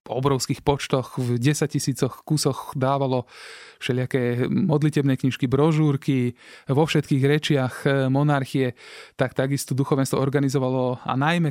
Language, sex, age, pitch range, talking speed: Slovak, male, 20-39, 130-145 Hz, 115 wpm